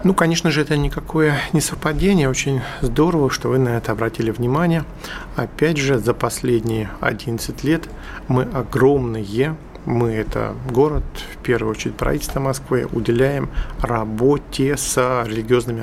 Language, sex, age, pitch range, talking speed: Russian, male, 50-69, 115-140 Hz, 135 wpm